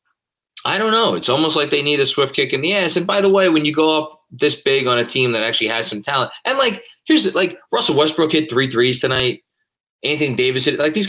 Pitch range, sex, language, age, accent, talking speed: 120-170 Hz, male, English, 20-39, American, 260 wpm